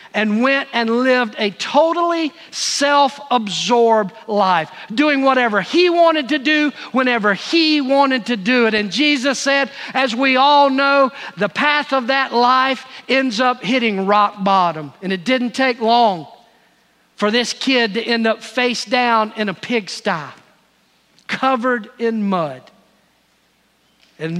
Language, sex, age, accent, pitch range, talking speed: English, male, 50-69, American, 205-265 Hz, 140 wpm